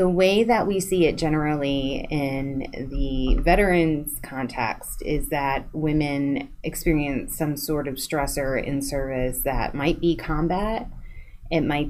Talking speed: 135 wpm